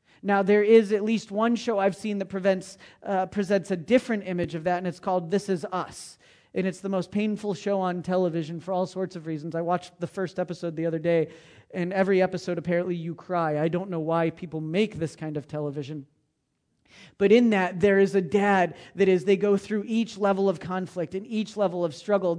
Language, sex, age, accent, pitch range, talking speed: English, male, 40-59, American, 170-200 Hz, 215 wpm